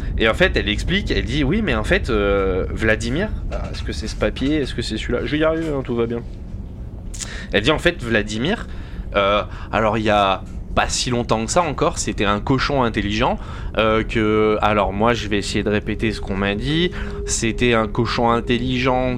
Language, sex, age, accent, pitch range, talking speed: French, male, 20-39, French, 105-120 Hz, 210 wpm